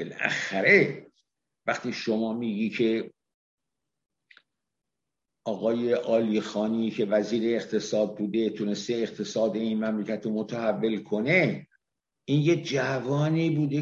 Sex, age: male, 60-79